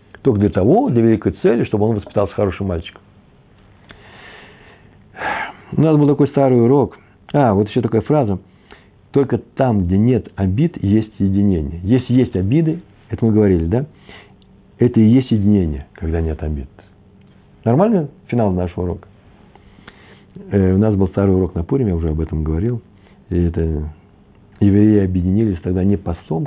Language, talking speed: Russian, 150 wpm